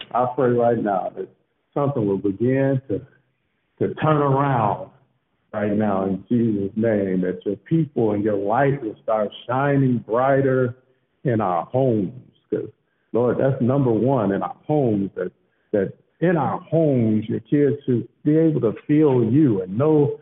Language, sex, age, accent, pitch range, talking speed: English, male, 60-79, American, 120-195 Hz, 155 wpm